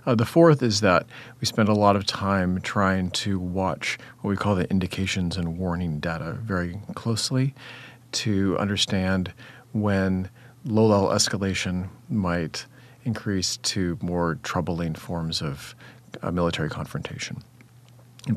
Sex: male